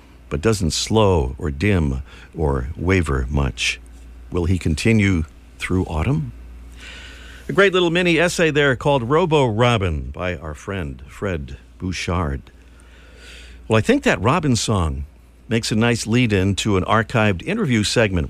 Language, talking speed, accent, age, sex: English, 130 wpm, American, 50-69, male